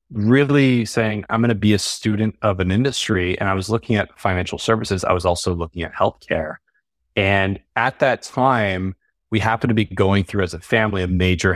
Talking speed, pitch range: 200 wpm, 90-110 Hz